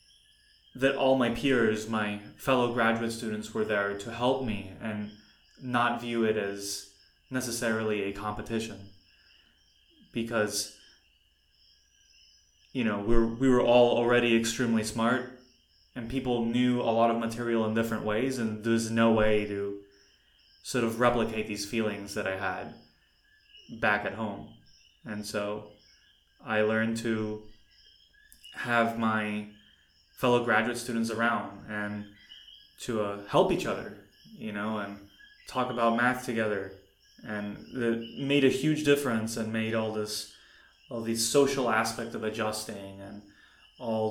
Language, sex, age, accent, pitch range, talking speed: Czech, male, 20-39, American, 105-120 Hz, 135 wpm